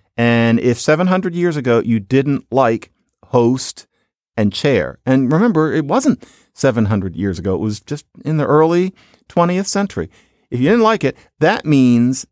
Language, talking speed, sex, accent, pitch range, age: English, 160 wpm, male, American, 115-170 Hz, 40-59